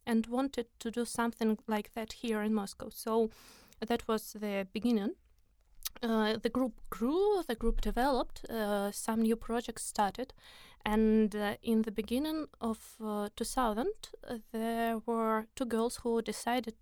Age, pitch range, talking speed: 20-39, 215-235 Hz, 150 wpm